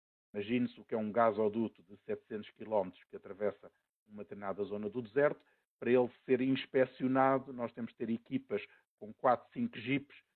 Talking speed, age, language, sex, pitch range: 170 wpm, 50-69, Portuguese, male, 115-140 Hz